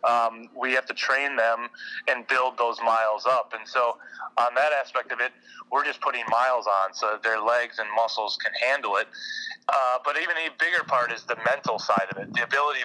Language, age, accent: English, 30-49, American